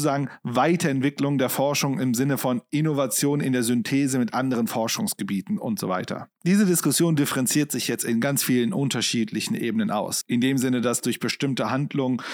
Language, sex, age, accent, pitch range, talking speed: German, male, 40-59, German, 130-170 Hz, 170 wpm